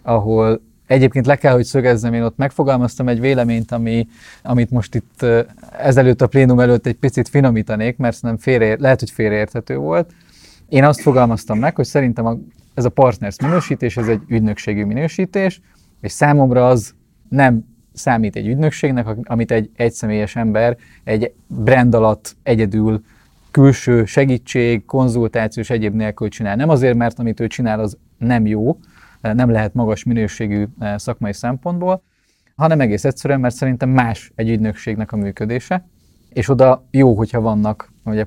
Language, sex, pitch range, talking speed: Hungarian, male, 110-135 Hz, 145 wpm